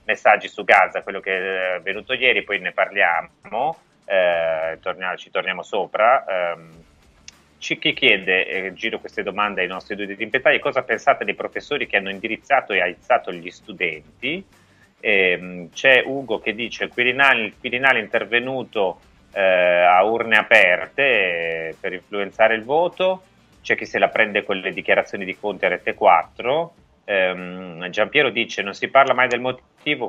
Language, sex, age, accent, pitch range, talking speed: Italian, male, 30-49, native, 85-110 Hz, 160 wpm